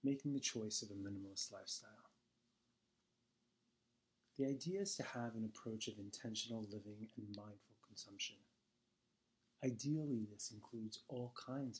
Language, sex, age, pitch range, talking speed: English, male, 30-49, 110-125 Hz, 125 wpm